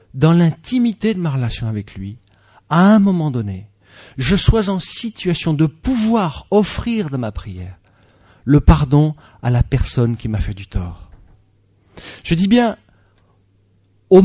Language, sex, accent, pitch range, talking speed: English, male, French, 100-160 Hz, 145 wpm